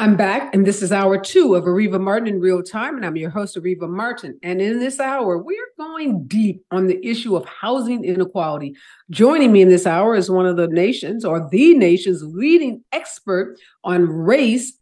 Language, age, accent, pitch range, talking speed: English, 50-69, American, 180-240 Hz, 200 wpm